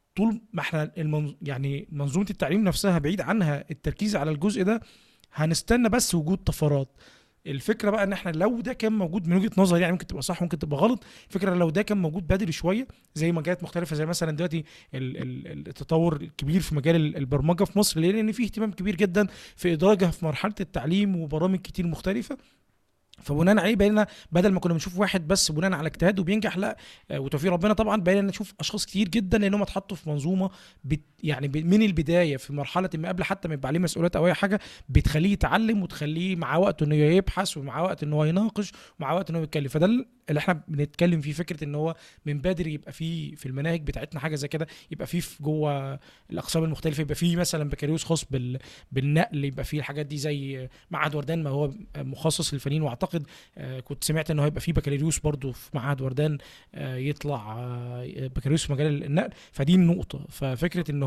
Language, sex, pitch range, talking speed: Arabic, male, 150-190 Hz, 185 wpm